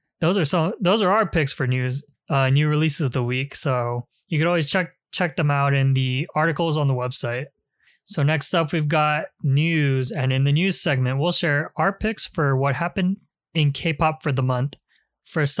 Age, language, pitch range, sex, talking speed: 20-39, English, 135-165 Hz, male, 210 wpm